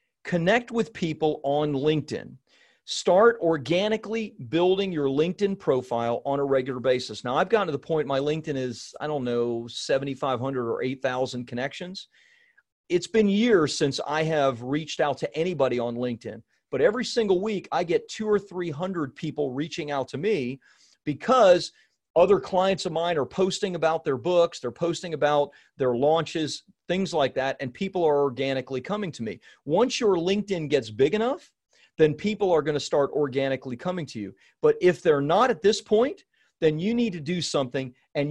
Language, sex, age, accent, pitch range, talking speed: English, male, 40-59, American, 140-190 Hz, 175 wpm